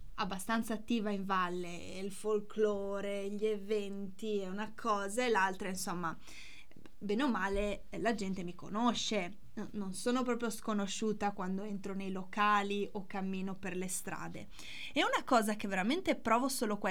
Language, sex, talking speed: Italian, female, 150 wpm